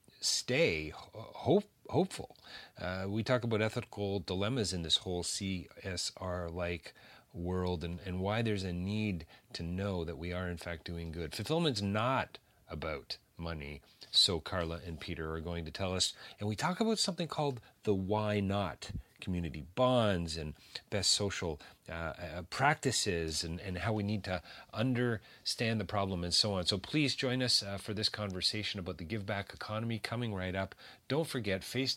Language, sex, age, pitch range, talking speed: English, male, 40-59, 90-110 Hz, 165 wpm